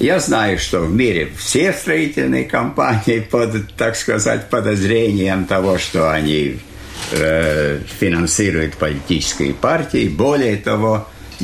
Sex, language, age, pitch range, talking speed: male, Russian, 60-79, 90-120 Hz, 115 wpm